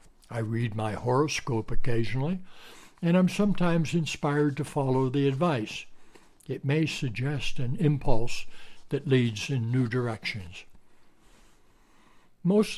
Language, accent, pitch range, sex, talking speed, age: English, American, 120-150 Hz, male, 115 wpm, 60-79